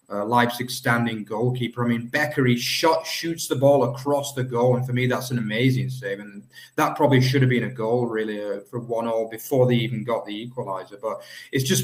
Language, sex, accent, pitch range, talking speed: English, male, British, 120-135 Hz, 225 wpm